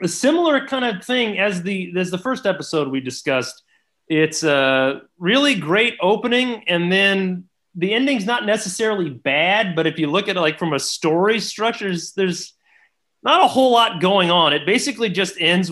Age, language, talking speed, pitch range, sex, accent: 30-49, English, 185 wpm, 150-215 Hz, male, American